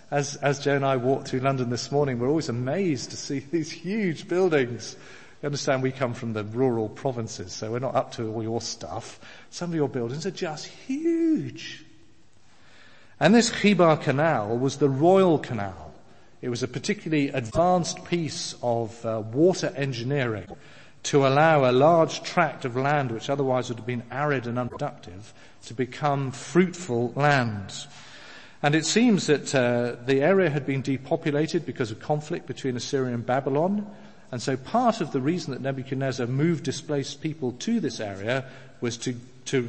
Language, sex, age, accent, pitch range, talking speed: English, male, 40-59, British, 125-155 Hz, 170 wpm